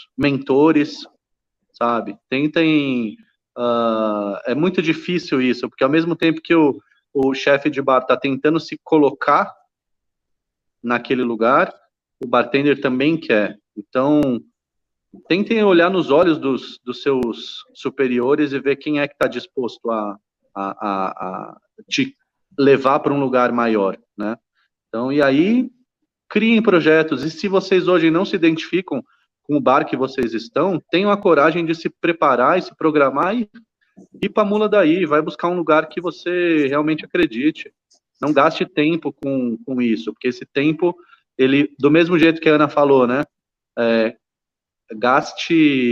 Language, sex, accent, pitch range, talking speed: Portuguese, male, Brazilian, 125-170 Hz, 150 wpm